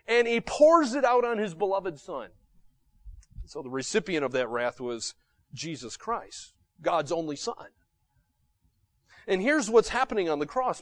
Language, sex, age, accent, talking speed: English, male, 30-49, American, 155 wpm